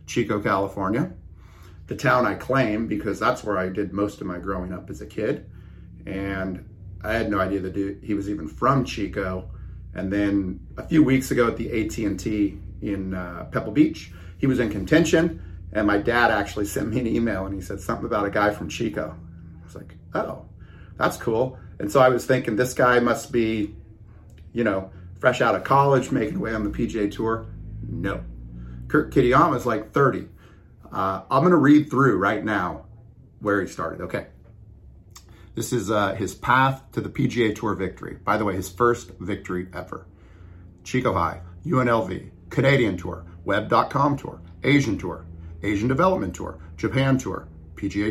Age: 30-49